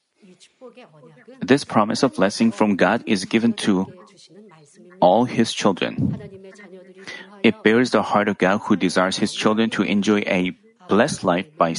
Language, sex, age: Korean, male, 30-49